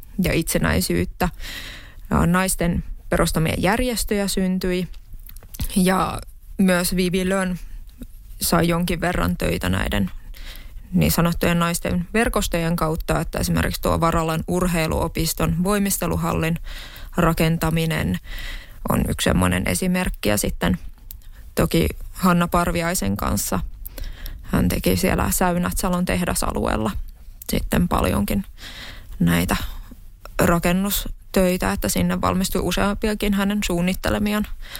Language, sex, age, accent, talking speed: Finnish, female, 20-39, native, 90 wpm